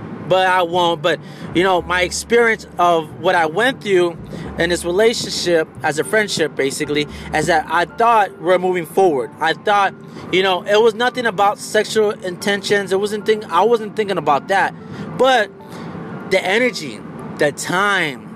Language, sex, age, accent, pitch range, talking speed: English, male, 20-39, American, 180-230 Hz, 165 wpm